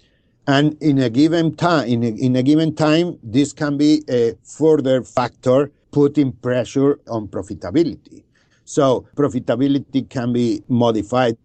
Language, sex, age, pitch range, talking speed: English, male, 50-69, 105-135 Hz, 135 wpm